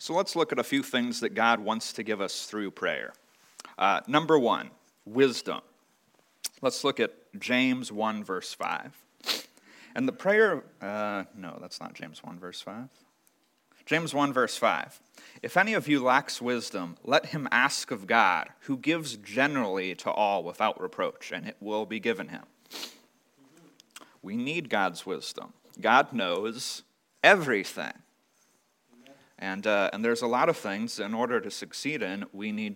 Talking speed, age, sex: 160 wpm, 30-49, male